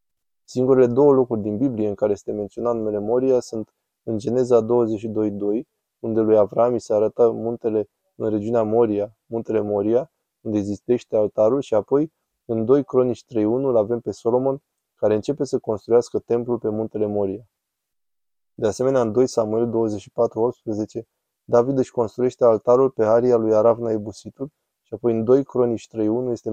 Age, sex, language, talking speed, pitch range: 20-39, male, Romanian, 155 wpm, 110-125 Hz